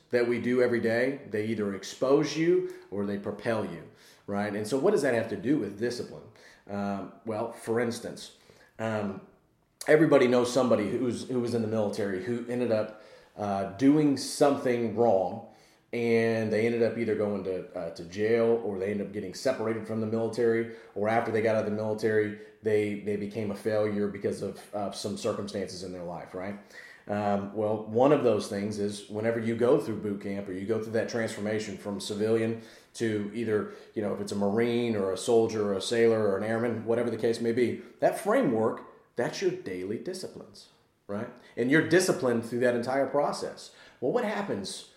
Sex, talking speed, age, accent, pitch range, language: male, 190 wpm, 30-49, American, 105-120 Hz, English